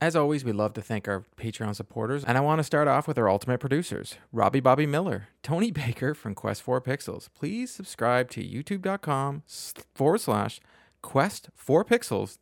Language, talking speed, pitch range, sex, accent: English, 170 wpm, 115-150 Hz, male, American